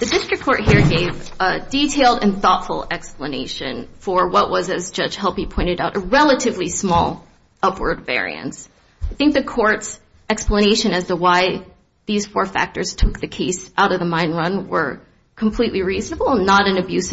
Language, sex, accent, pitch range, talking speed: English, female, American, 185-240 Hz, 170 wpm